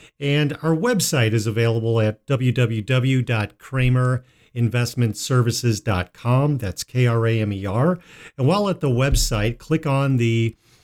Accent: American